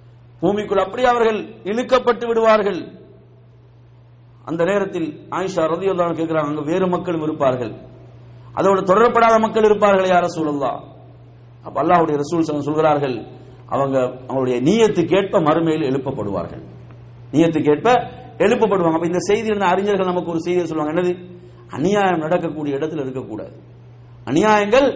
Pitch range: 125-195 Hz